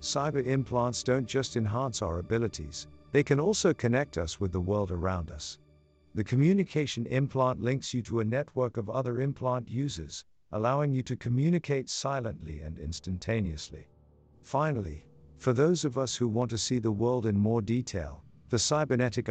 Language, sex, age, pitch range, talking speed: English, male, 50-69, 90-125 Hz, 160 wpm